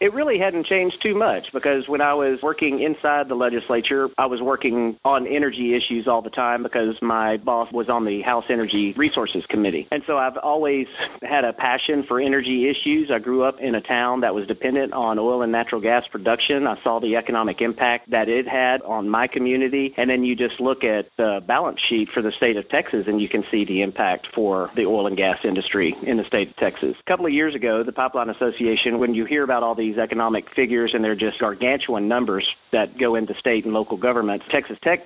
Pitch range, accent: 115-135 Hz, American